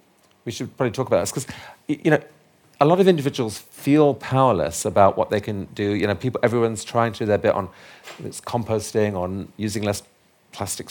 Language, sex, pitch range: English, male, 105-135 Hz